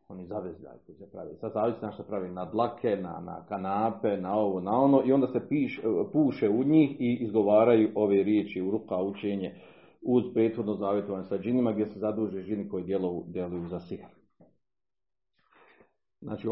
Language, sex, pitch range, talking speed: Croatian, male, 95-115 Hz, 175 wpm